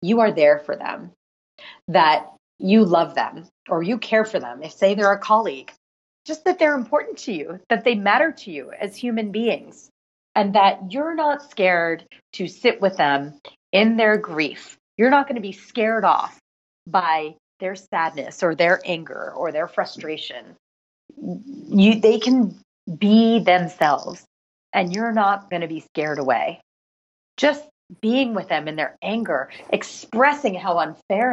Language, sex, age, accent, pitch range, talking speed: English, female, 30-49, American, 180-230 Hz, 160 wpm